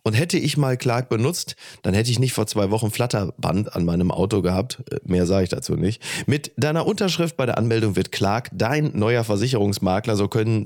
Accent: German